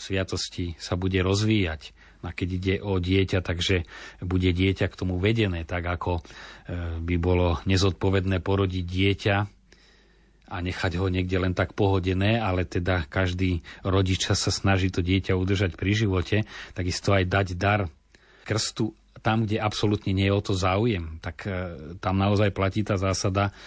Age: 40-59